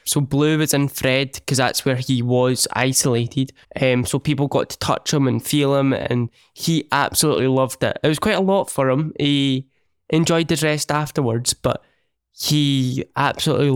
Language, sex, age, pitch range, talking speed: English, male, 10-29, 130-155 Hz, 180 wpm